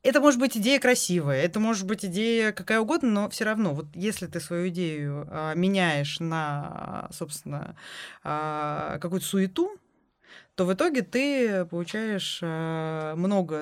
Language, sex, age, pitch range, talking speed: Russian, female, 20-39, 165-215 Hz, 145 wpm